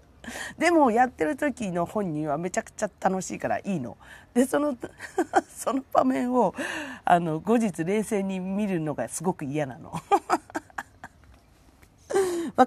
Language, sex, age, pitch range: Japanese, female, 40-59, 150-255 Hz